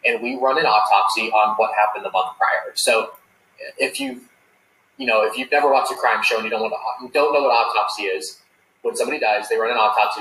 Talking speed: 245 wpm